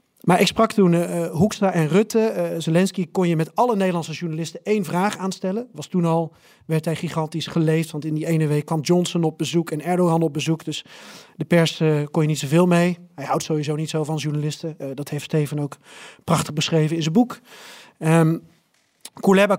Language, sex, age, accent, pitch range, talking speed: Dutch, male, 40-59, Dutch, 160-195 Hz, 205 wpm